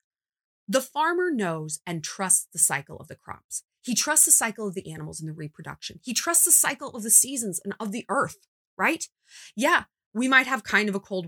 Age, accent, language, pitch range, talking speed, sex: 30-49, American, English, 175-265 Hz, 215 wpm, female